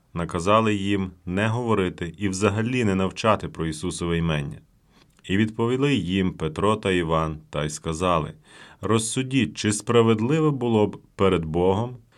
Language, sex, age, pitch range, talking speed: Ukrainian, male, 30-49, 85-110 Hz, 135 wpm